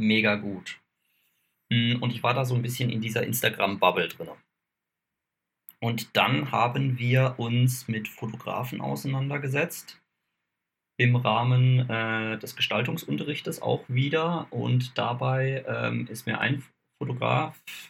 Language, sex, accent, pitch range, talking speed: German, male, German, 105-130 Hz, 115 wpm